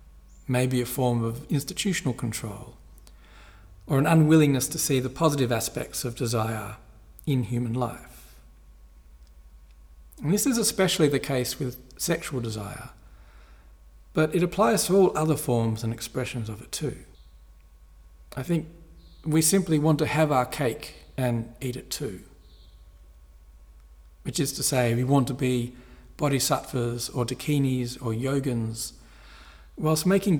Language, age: English, 40-59